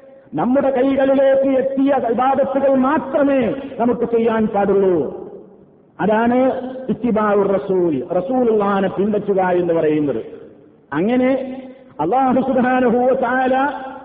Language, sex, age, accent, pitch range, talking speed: Malayalam, male, 50-69, native, 225-270 Hz, 75 wpm